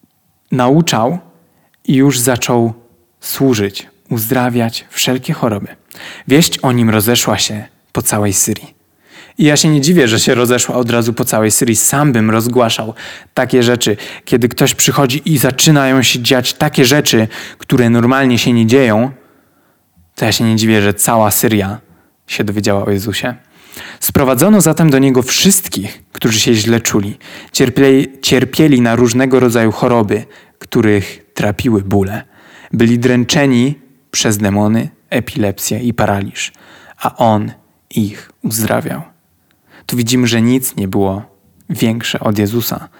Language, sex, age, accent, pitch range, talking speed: Polish, male, 20-39, native, 110-130 Hz, 135 wpm